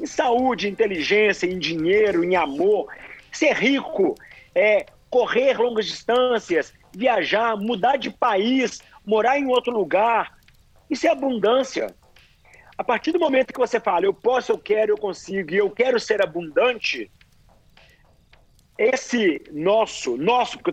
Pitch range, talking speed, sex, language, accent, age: 205-275 Hz, 130 wpm, male, Portuguese, Brazilian, 50-69